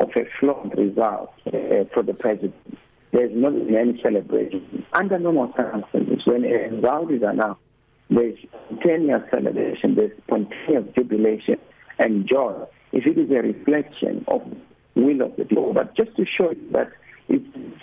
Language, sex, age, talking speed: English, male, 60-79, 155 wpm